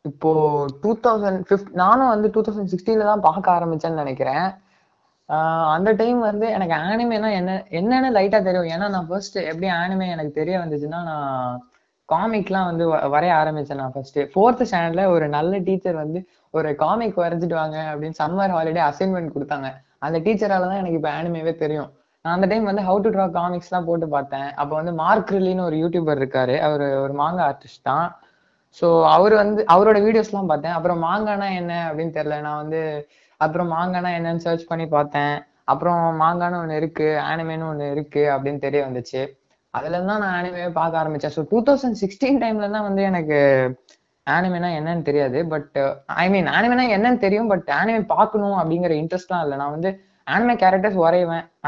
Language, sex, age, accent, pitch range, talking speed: Tamil, female, 20-39, native, 150-195 Hz, 165 wpm